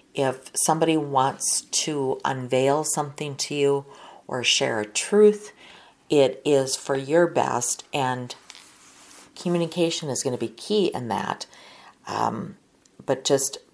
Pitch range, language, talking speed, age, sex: 130-165 Hz, English, 125 wpm, 40-59, female